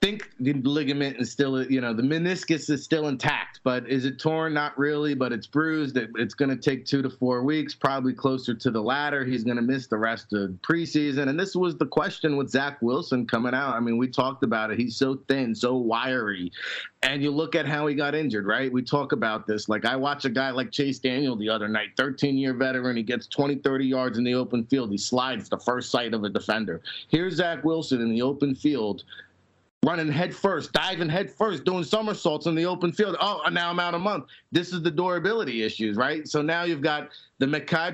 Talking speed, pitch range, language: 230 wpm, 130-160 Hz, English